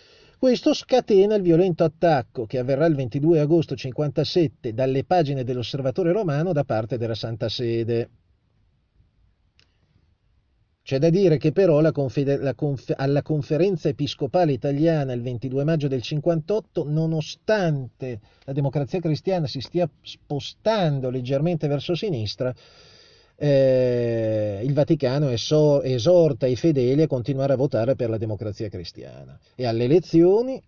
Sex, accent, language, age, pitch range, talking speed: male, native, Italian, 40-59, 125-165 Hz, 120 wpm